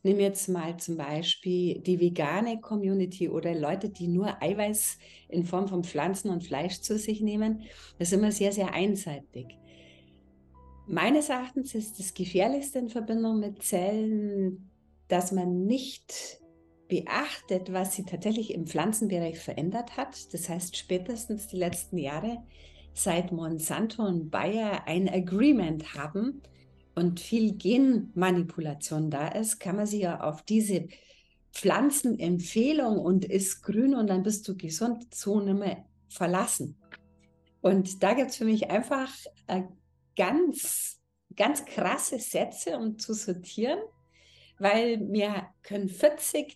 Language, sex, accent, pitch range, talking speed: German, female, German, 175-220 Hz, 135 wpm